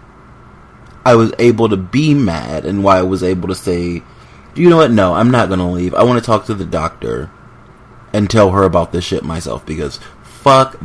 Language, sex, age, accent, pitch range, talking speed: English, male, 30-49, American, 85-115 Hz, 210 wpm